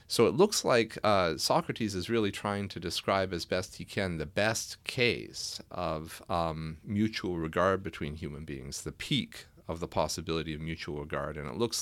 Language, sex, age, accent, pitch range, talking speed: English, male, 40-59, American, 80-115 Hz, 185 wpm